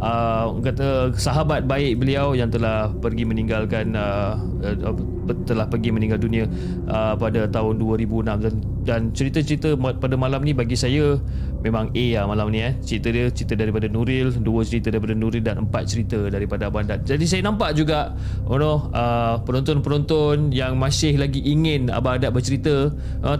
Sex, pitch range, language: male, 110-135 Hz, Malay